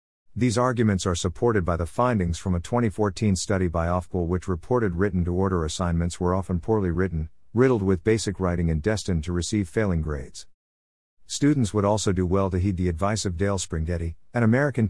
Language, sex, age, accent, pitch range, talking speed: English, male, 50-69, American, 85-110 Hz, 190 wpm